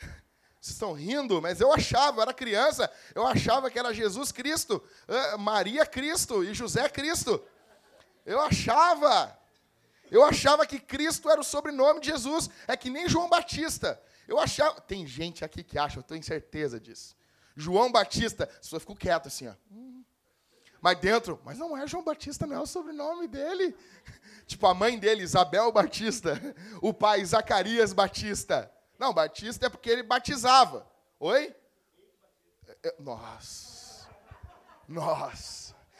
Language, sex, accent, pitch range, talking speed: Portuguese, male, Brazilian, 220-310 Hz, 140 wpm